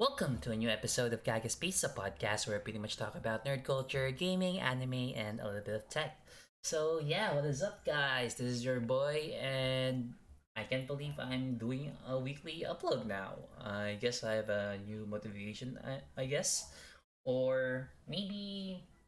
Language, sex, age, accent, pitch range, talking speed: Filipino, male, 20-39, native, 105-130 Hz, 180 wpm